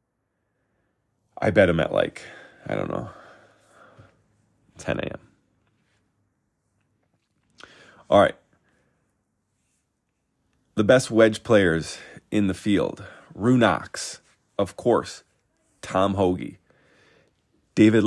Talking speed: 85 wpm